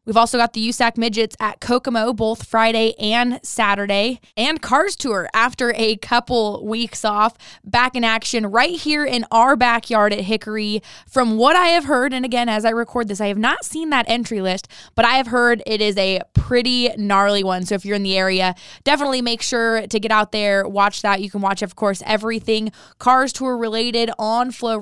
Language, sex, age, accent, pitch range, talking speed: English, female, 20-39, American, 205-240 Hz, 205 wpm